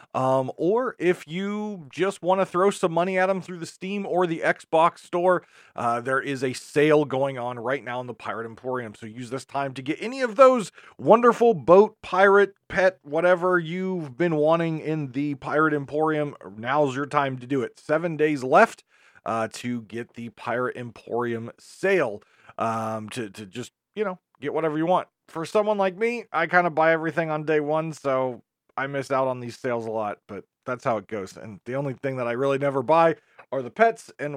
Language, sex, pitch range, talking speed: English, male, 125-180 Hz, 205 wpm